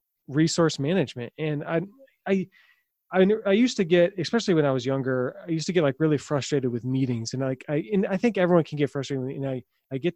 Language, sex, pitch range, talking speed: English, male, 130-175 Hz, 225 wpm